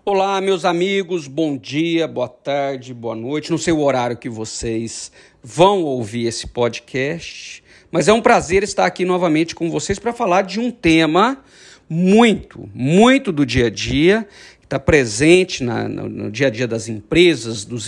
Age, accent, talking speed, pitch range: 50-69, Brazilian, 165 wpm, 120-190 Hz